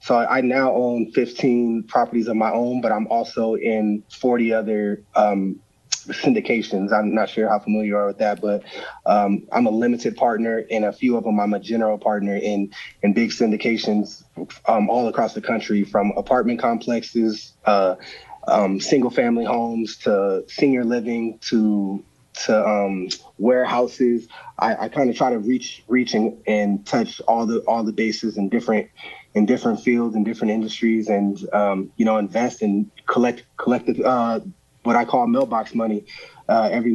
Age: 20-39